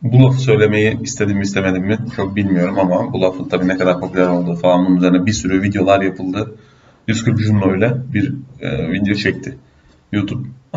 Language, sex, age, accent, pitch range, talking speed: Turkish, male, 30-49, native, 95-120 Hz, 175 wpm